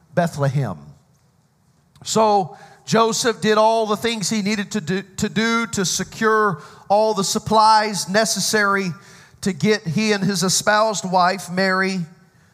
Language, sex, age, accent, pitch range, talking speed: English, male, 40-59, American, 160-215 Hz, 130 wpm